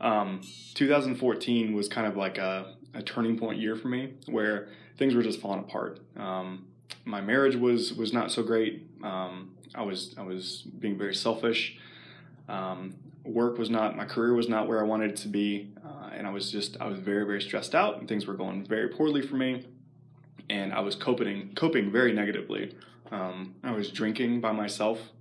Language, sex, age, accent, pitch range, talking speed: English, male, 20-39, American, 100-115 Hz, 195 wpm